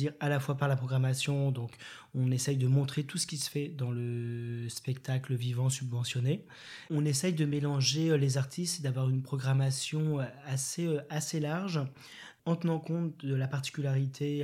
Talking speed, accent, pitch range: 160 wpm, French, 125-145 Hz